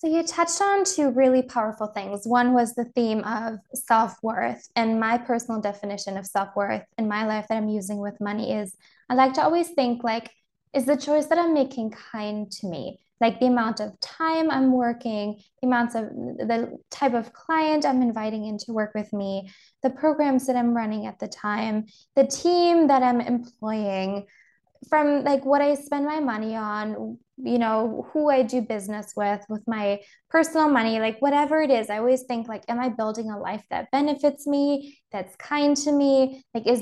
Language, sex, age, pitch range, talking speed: English, female, 20-39, 215-265 Hz, 190 wpm